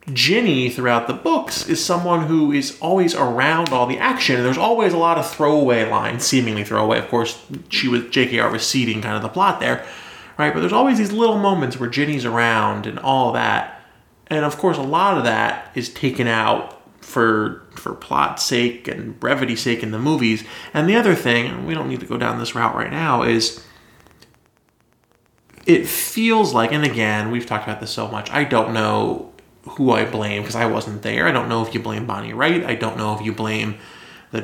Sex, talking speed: male, 210 wpm